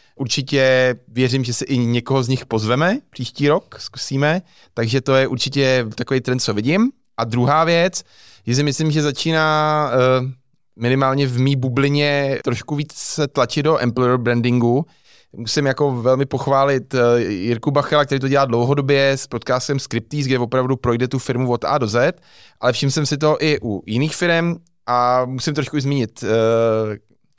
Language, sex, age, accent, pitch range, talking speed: Czech, male, 20-39, native, 120-140 Hz, 165 wpm